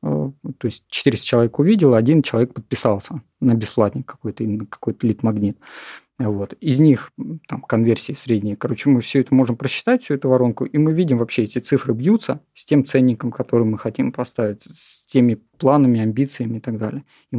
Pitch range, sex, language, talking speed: 115-140 Hz, male, Russian, 160 wpm